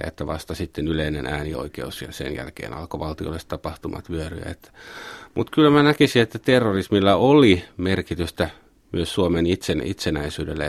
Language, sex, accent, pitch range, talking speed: Finnish, male, native, 80-100 Hz, 135 wpm